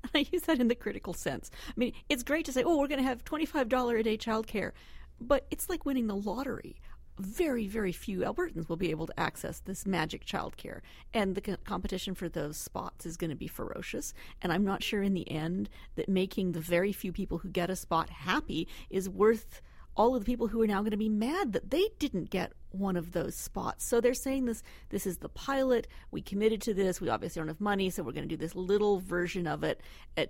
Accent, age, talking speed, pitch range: American, 40-59, 240 wpm, 175-225 Hz